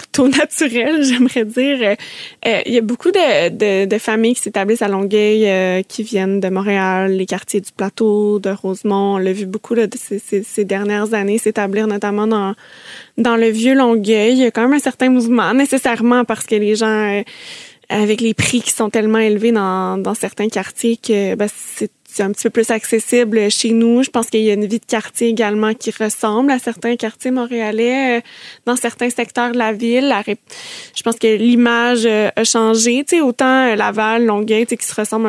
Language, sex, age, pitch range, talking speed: French, female, 20-39, 205-235 Hz, 190 wpm